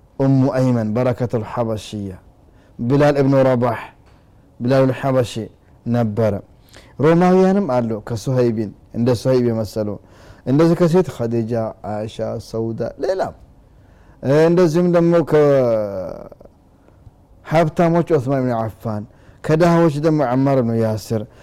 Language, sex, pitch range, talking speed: Amharic, male, 110-150 Hz, 95 wpm